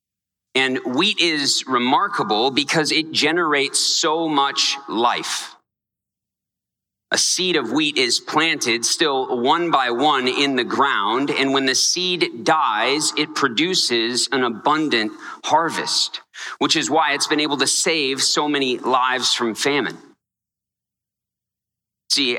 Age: 40-59